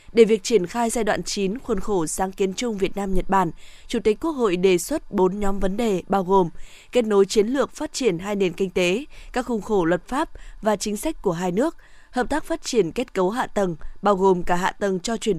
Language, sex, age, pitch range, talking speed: Vietnamese, female, 20-39, 185-235 Hz, 250 wpm